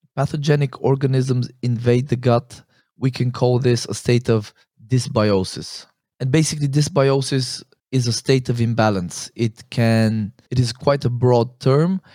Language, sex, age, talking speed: English, male, 20-39, 145 wpm